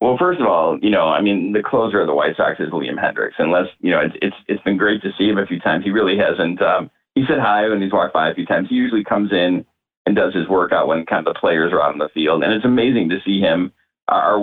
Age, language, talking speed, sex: 40-59, English, 285 wpm, male